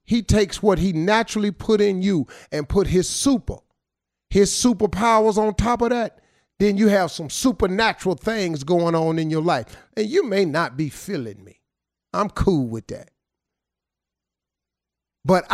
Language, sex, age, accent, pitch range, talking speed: English, male, 40-59, American, 135-185 Hz, 160 wpm